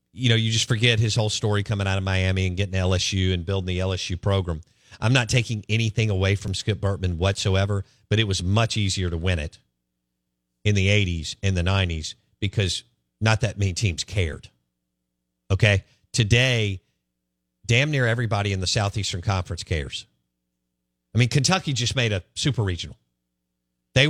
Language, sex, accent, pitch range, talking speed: English, male, American, 85-115 Hz, 170 wpm